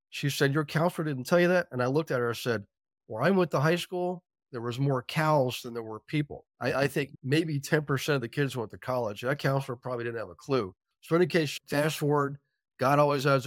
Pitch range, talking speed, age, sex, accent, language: 120-150 Hz, 255 wpm, 40-59, male, American, English